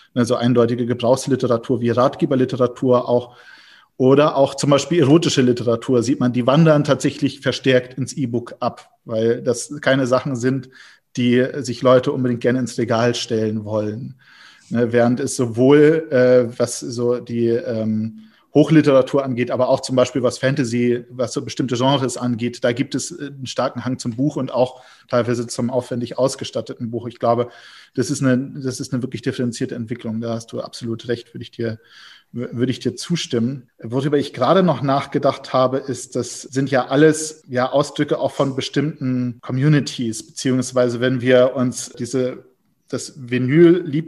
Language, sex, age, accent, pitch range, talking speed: German, male, 40-59, German, 120-140 Hz, 165 wpm